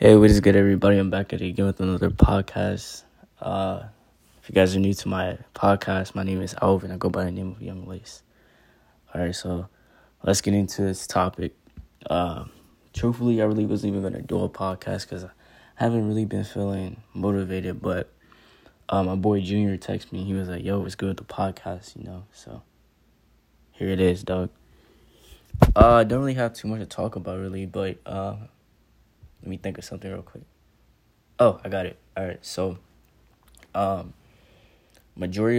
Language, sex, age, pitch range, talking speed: English, male, 10-29, 95-100 Hz, 190 wpm